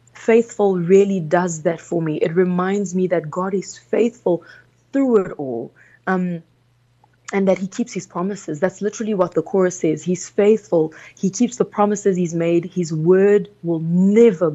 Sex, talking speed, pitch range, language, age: female, 170 wpm, 165-200 Hz, English, 20-39